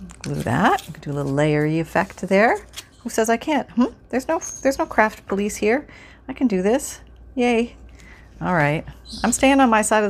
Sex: female